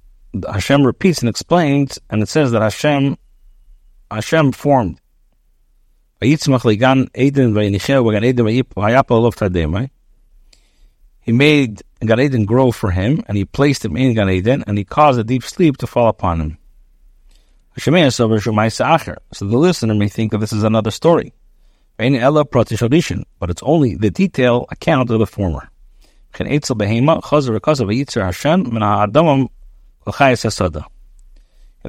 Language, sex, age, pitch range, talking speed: English, male, 50-69, 105-135 Hz, 105 wpm